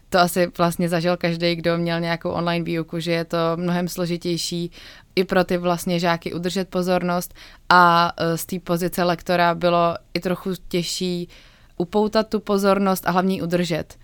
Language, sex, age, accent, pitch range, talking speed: Czech, female, 20-39, native, 170-185 Hz, 160 wpm